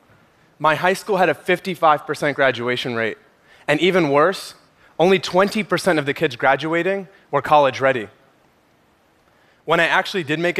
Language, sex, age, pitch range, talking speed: Arabic, male, 30-49, 145-185 Hz, 140 wpm